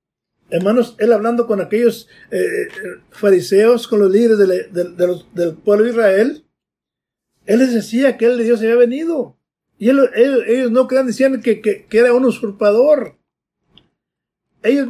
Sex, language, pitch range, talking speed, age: male, Spanish, 215-265 Hz, 165 wpm, 50-69